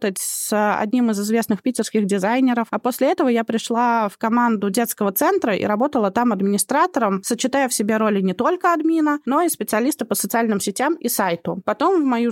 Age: 20-39